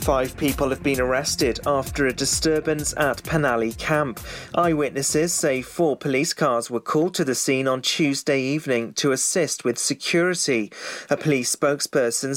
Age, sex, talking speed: 30-49, male, 150 wpm